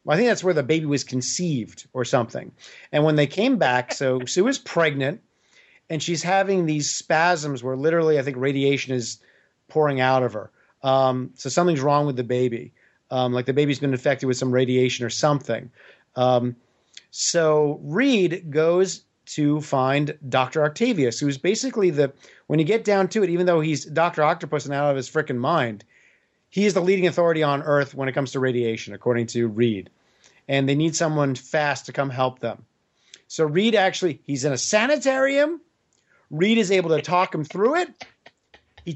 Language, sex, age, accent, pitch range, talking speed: English, male, 40-59, American, 135-190 Hz, 190 wpm